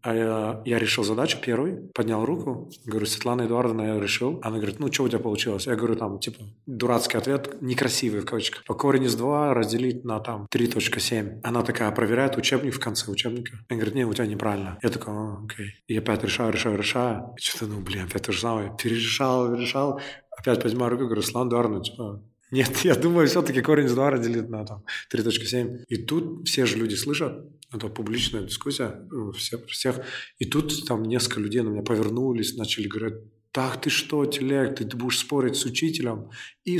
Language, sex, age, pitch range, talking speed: Russian, male, 20-39, 110-130 Hz, 190 wpm